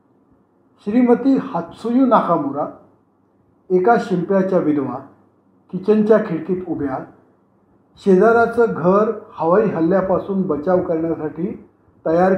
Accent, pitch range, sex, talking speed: native, 165-215 Hz, male, 80 wpm